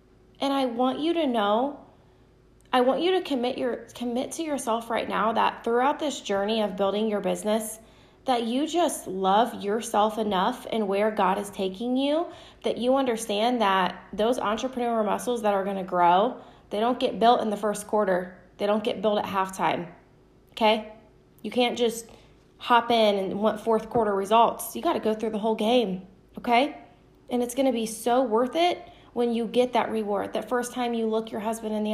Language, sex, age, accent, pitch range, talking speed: English, female, 20-39, American, 215-250 Hz, 195 wpm